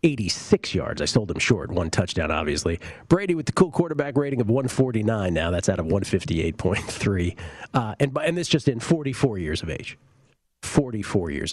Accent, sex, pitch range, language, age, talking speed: American, male, 110-150 Hz, English, 40-59, 175 wpm